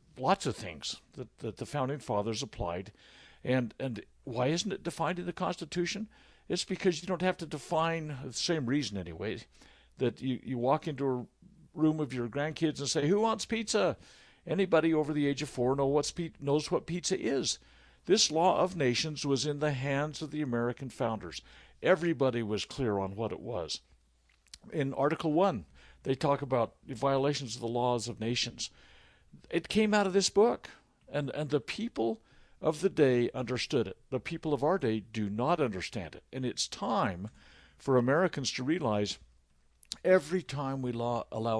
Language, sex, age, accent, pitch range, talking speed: English, male, 60-79, American, 110-155 Hz, 180 wpm